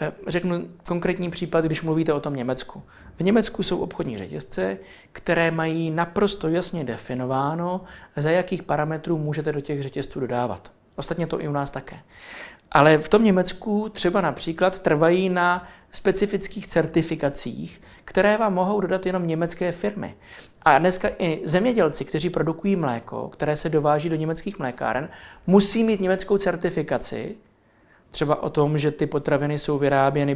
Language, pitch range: Czech, 145-185 Hz